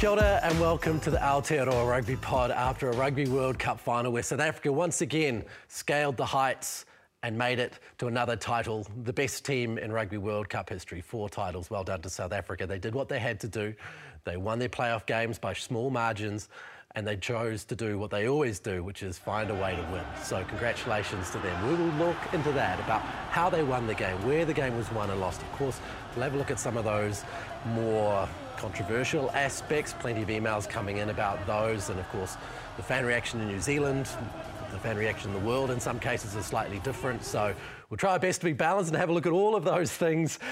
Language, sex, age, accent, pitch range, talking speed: English, male, 30-49, Australian, 105-135 Hz, 225 wpm